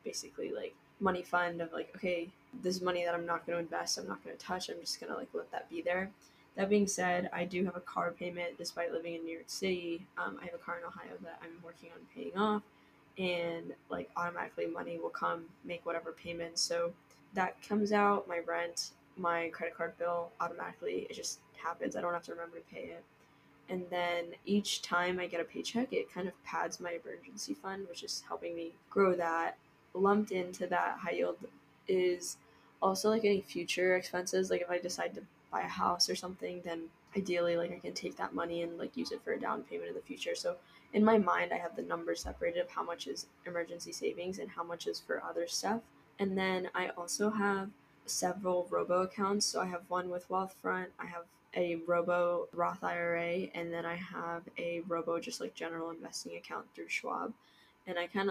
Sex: female